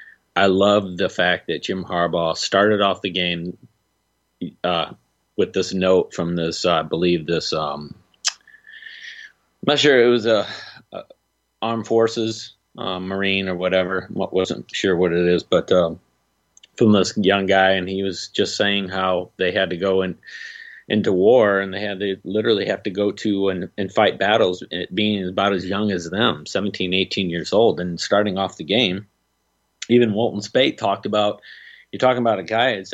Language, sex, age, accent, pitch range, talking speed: English, male, 30-49, American, 90-105 Hz, 180 wpm